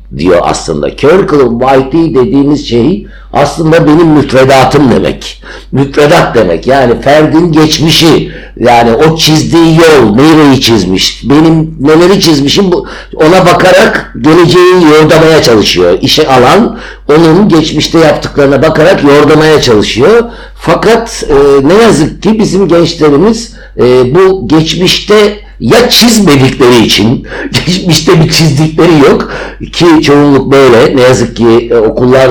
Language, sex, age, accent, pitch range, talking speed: Turkish, male, 60-79, native, 135-175 Hz, 115 wpm